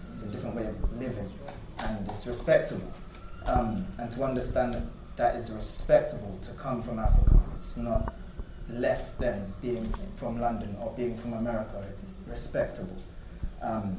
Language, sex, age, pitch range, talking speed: English, male, 20-39, 95-120 Hz, 150 wpm